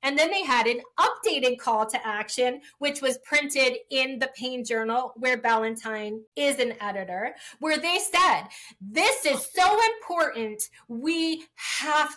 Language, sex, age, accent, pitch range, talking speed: English, female, 30-49, American, 230-300 Hz, 150 wpm